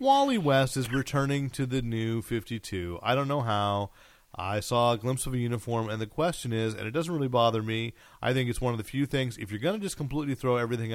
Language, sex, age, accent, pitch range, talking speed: English, male, 40-59, American, 100-125 Hz, 245 wpm